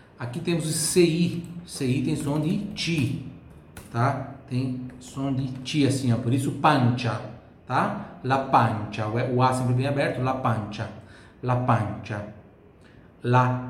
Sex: male